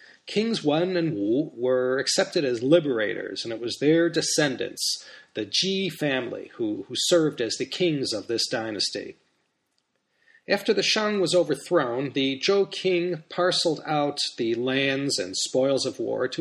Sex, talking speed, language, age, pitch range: male, 155 wpm, English, 30-49, 130-175 Hz